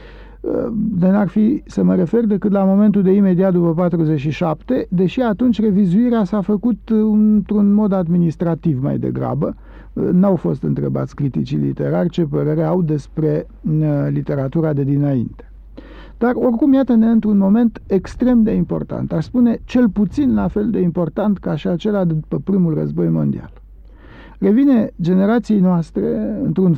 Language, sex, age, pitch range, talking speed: Romanian, male, 50-69, 165-220 Hz, 140 wpm